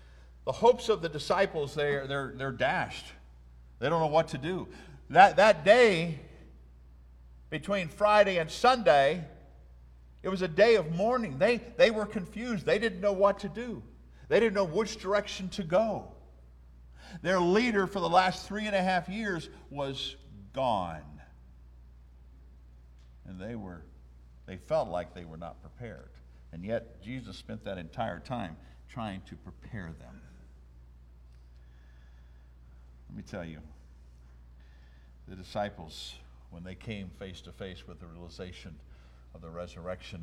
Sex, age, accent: male, 50-69, American